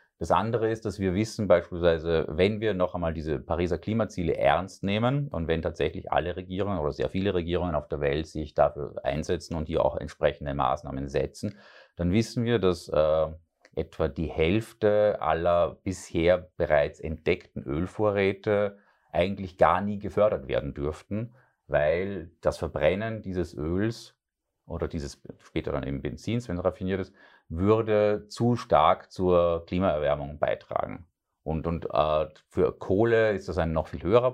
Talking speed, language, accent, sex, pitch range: 155 wpm, German, German, male, 80-105 Hz